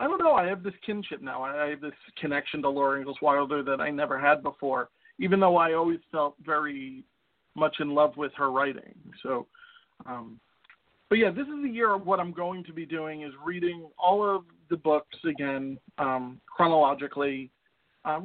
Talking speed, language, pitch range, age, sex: 190 wpm, English, 150-205 Hz, 40-59, male